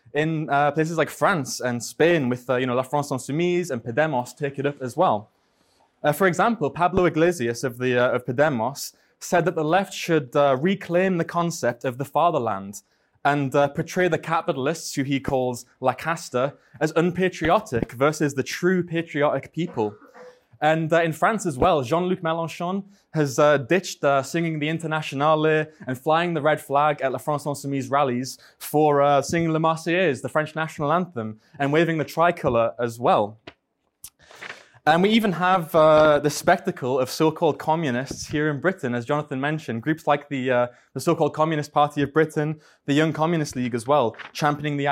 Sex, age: male, 20-39